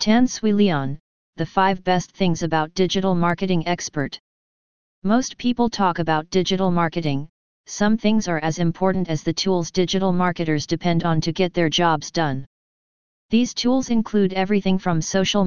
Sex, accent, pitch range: female, American, 165-190 Hz